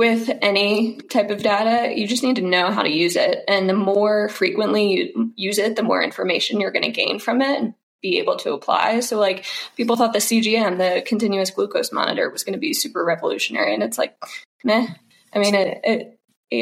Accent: American